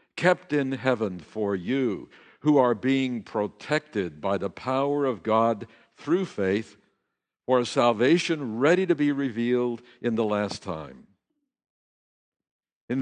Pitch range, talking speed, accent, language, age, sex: 100-140 Hz, 130 wpm, American, English, 60-79, male